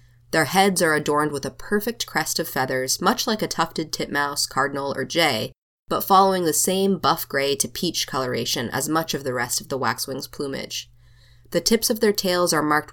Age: 20-39